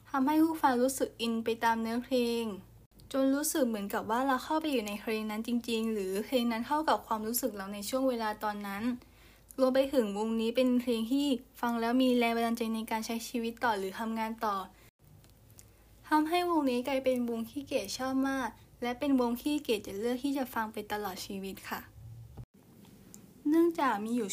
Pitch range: 215-260 Hz